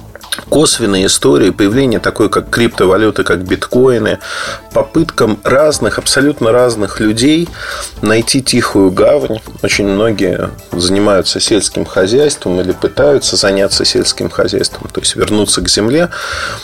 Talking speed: 110 wpm